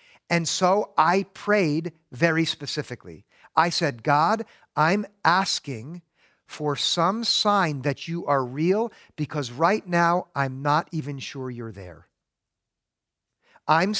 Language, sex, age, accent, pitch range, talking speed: English, male, 50-69, American, 145-195 Hz, 120 wpm